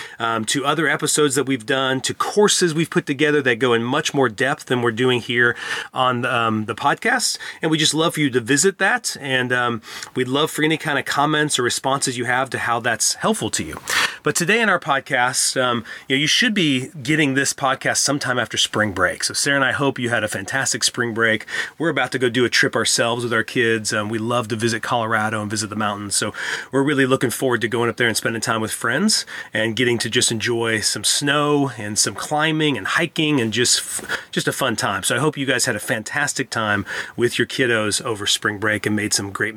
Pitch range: 120-150 Hz